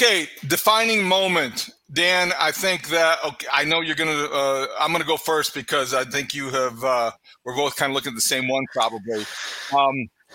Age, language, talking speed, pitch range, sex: 40-59, English, 210 wpm, 125-155 Hz, male